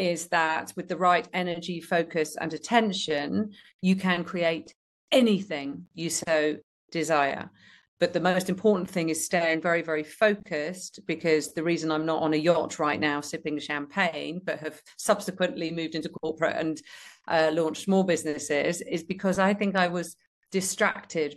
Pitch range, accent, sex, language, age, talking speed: 155-180 Hz, British, female, English, 40-59, 155 wpm